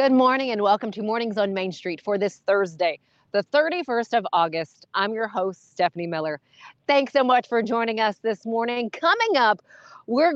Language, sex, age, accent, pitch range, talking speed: English, female, 40-59, American, 195-260 Hz, 185 wpm